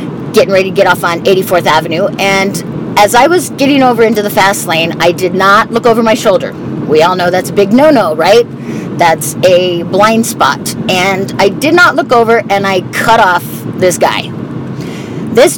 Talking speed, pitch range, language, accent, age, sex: 195 wpm, 180-235 Hz, English, American, 30-49, female